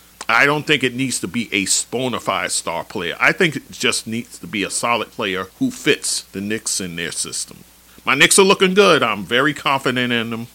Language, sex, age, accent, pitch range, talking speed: English, male, 40-59, American, 95-130 Hz, 215 wpm